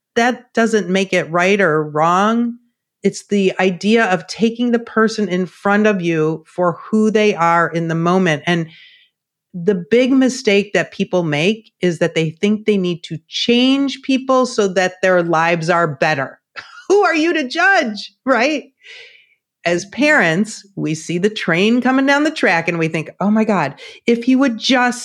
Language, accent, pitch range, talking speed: English, American, 180-235 Hz, 175 wpm